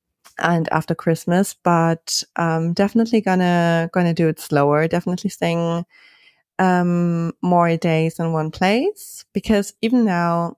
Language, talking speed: English, 125 wpm